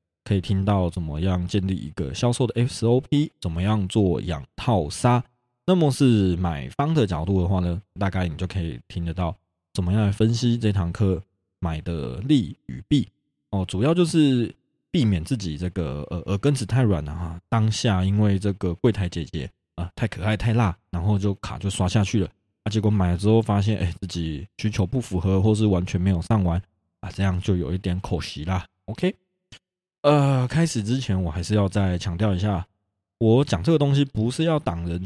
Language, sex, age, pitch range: Chinese, male, 20-39, 90-115 Hz